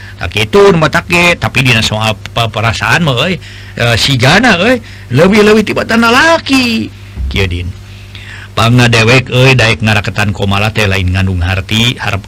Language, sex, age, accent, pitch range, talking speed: Indonesian, male, 50-69, native, 100-140 Hz, 140 wpm